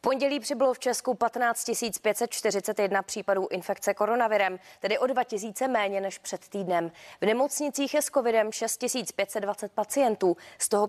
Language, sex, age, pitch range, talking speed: Czech, female, 20-39, 190-235 Hz, 140 wpm